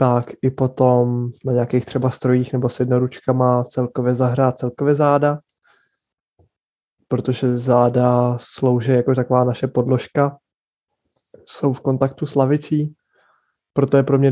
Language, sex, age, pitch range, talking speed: Czech, male, 20-39, 125-135 Hz, 125 wpm